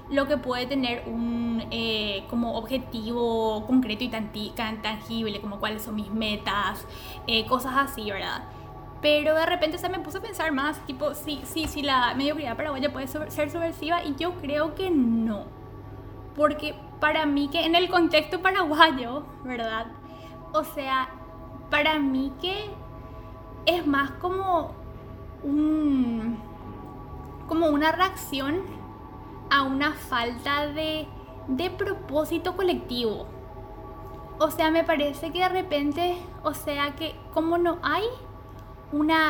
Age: 10-29